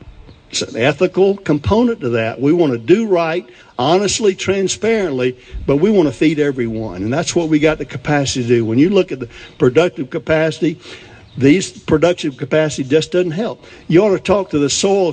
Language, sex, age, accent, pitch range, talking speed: English, male, 60-79, American, 125-170 Hz, 190 wpm